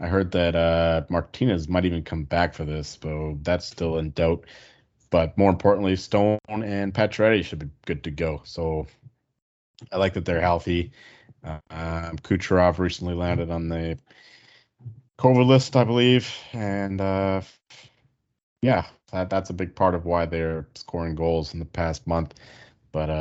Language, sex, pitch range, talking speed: English, male, 80-95 Hz, 160 wpm